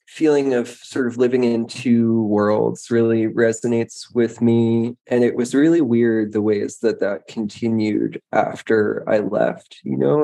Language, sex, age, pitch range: English, male, 20-39, 110-125 Hz